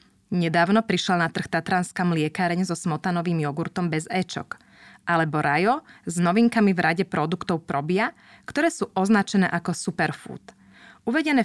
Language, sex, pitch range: Slovak, female, 165-205 Hz